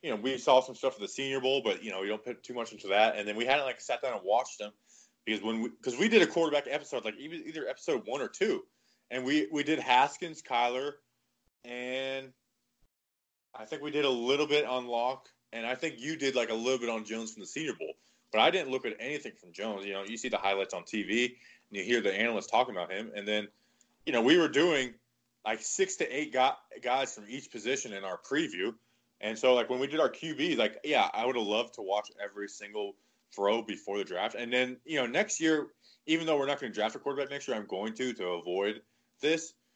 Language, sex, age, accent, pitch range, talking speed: English, male, 20-39, American, 105-145 Hz, 245 wpm